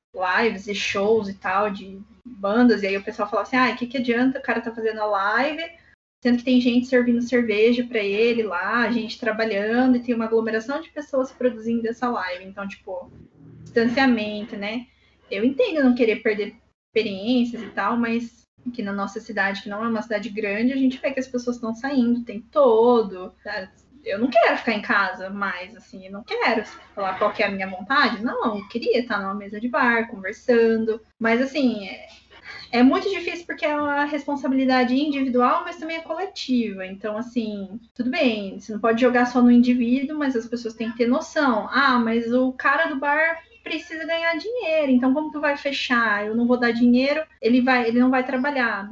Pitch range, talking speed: 220-260 Hz, 200 wpm